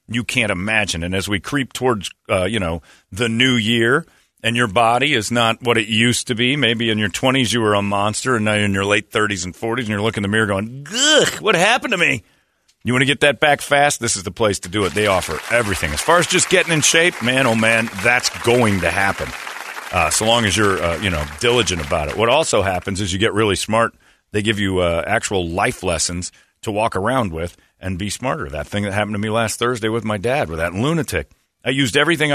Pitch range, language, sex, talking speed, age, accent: 100-125 Hz, English, male, 250 wpm, 40-59, American